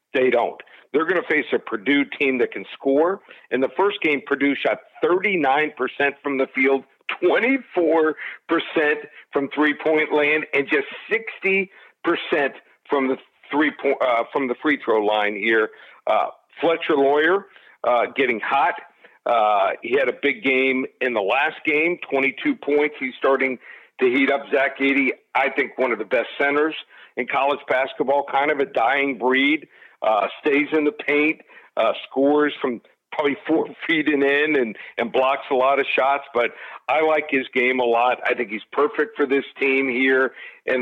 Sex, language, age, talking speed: male, English, 50-69, 175 wpm